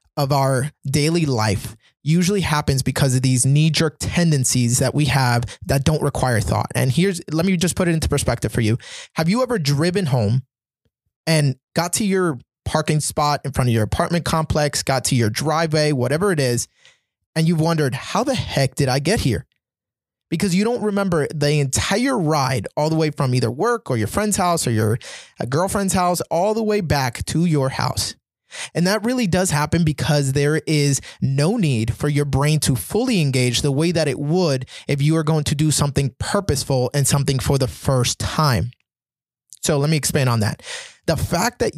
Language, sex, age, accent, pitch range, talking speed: English, male, 20-39, American, 130-165 Hz, 195 wpm